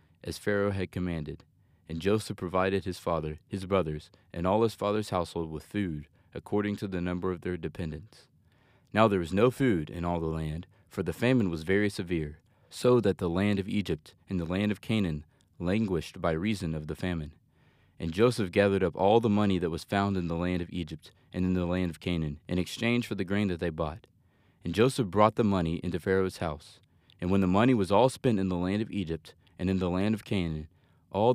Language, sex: English, male